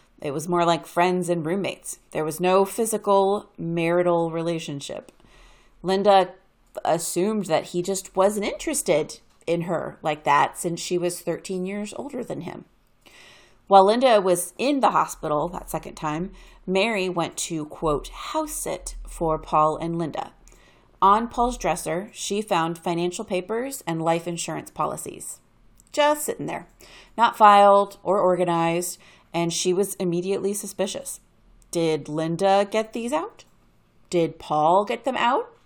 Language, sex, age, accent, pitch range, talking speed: English, female, 30-49, American, 165-200 Hz, 140 wpm